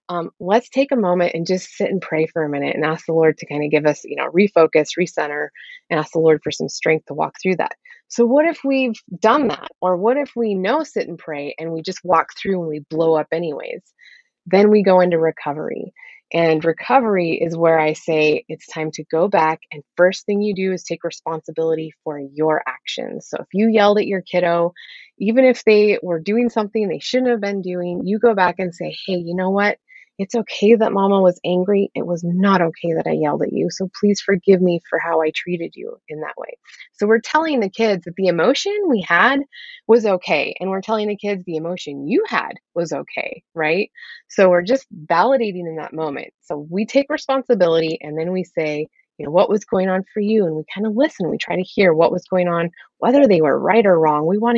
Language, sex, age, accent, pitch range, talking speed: English, female, 20-39, American, 165-225 Hz, 230 wpm